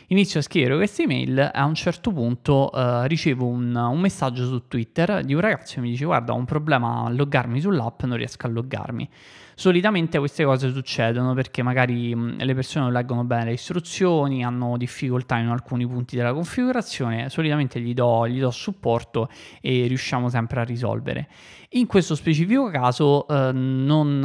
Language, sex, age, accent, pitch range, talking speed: Italian, male, 20-39, native, 120-150 Hz, 175 wpm